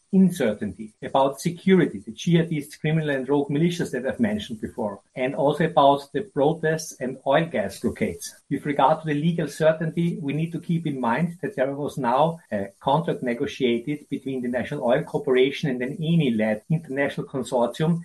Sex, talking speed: male, 170 wpm